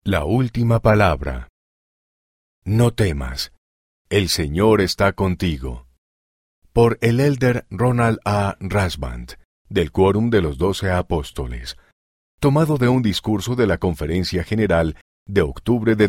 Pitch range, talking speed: 75-115 Hz, 120 wpm